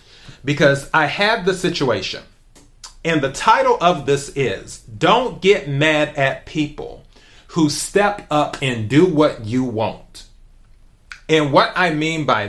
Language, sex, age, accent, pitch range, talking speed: English, male, 30-49, American, 140-175 Hz, 140 wpm